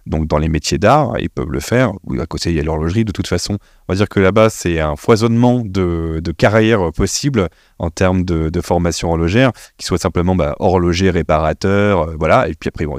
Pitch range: 85-110 Hz